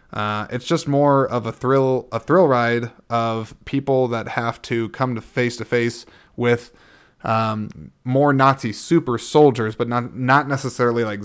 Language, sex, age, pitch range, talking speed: English, male, 20-39, 110-145 Hz, 165 wpm